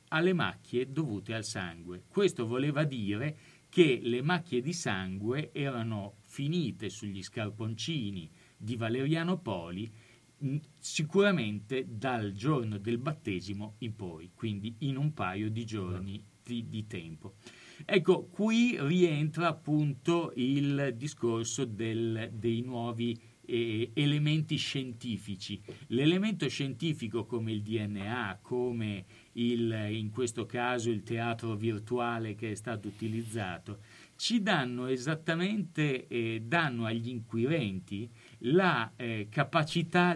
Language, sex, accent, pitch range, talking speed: Italian, male, native, 110-150 Hz, 110 wpm